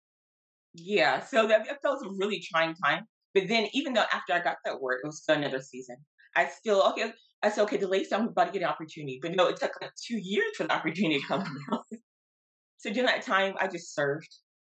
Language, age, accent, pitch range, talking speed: English, 20-39, American, 160-215 Hz, 230 wpm